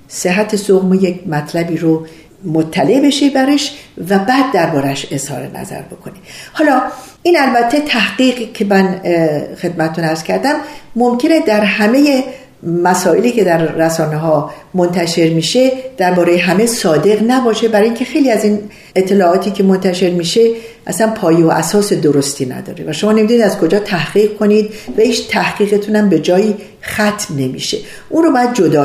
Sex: female